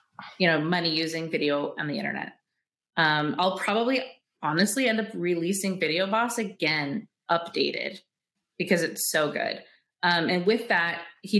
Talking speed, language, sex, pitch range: 145 wpm, English, female, 165-210 Hz